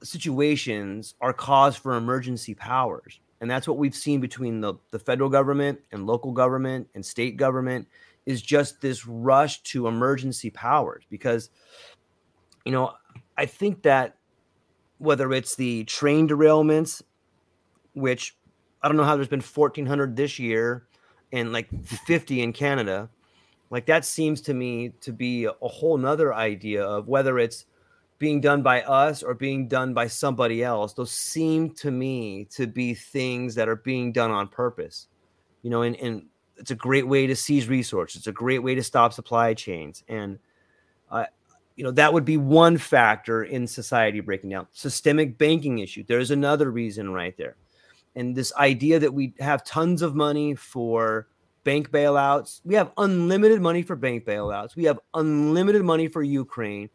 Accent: American